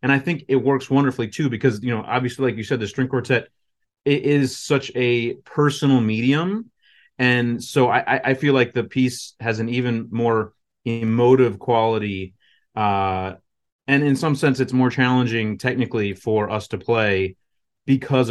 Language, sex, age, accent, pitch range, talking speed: English, male, 30-49, American, 110-130 Hz, 165 wpm